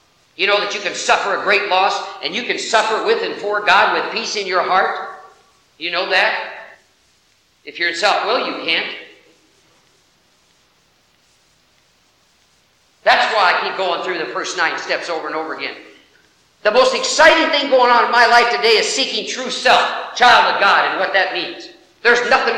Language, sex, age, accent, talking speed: English, male, 50-69, American, 185 wpm